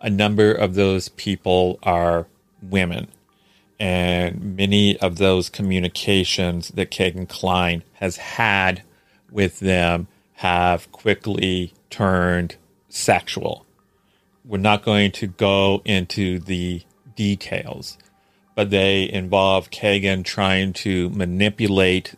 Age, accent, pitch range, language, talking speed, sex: 40-59, American, 90-100 Hz, English, 105 wpm, male